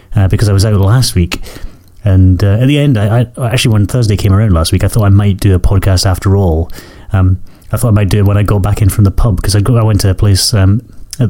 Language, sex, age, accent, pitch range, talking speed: English, male, 30-49, British, 95-110 Hz, 285 wpm